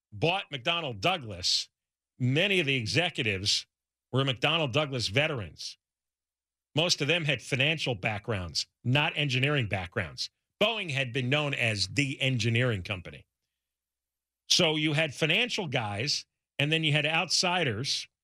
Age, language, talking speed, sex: 50-69, English, 125 wpm, male